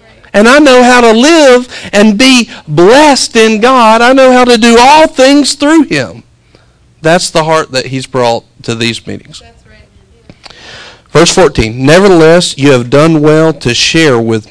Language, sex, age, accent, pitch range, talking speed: English, male, 40-59, American, 120-170 Hz, 160 wpm